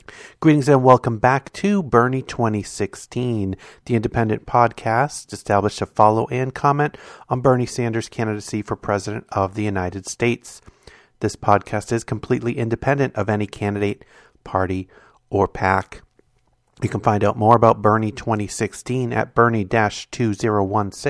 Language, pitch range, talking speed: English, 100-120 Hz, 130 wpm